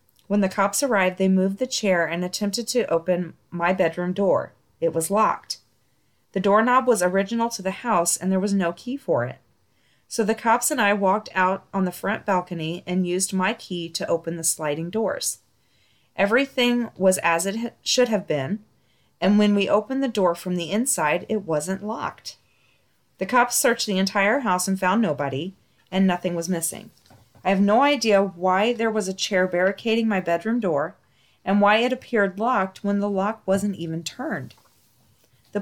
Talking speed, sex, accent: 185 wpm, female, American